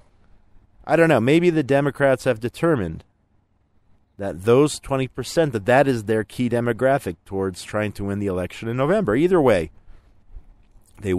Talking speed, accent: 155 wpm, American